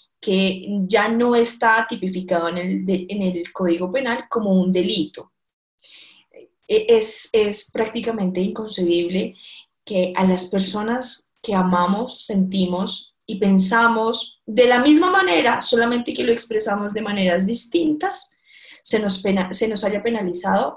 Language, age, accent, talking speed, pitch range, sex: Spanish, 10-29, Colombian, 135 wpm, 190-235 Hz, female